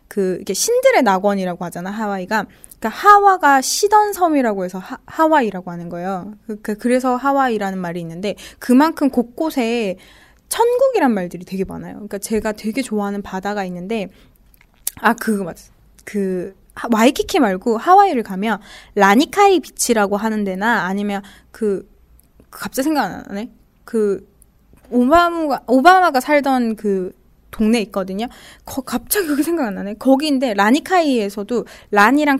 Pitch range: 200-275 Hz